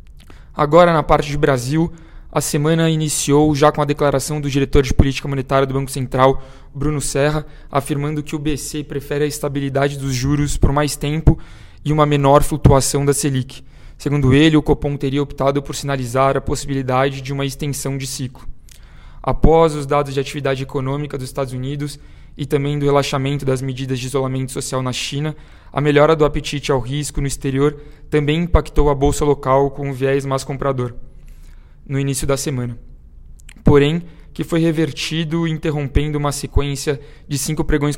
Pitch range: 135-150 Hz